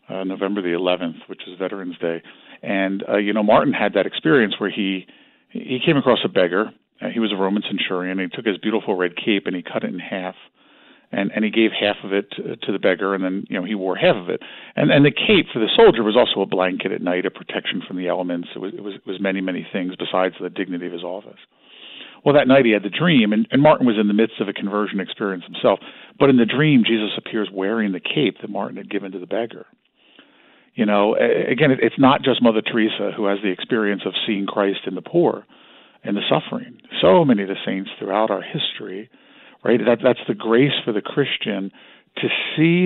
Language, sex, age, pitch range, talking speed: English, male, 50-69, 95-115 Hz, 235 wpm